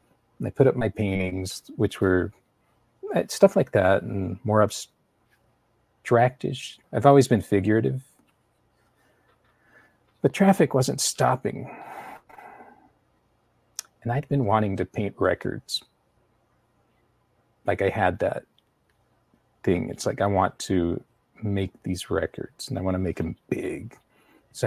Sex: male